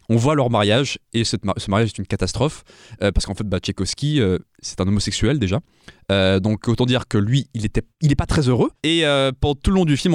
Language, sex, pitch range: French, male, 105-135 Hz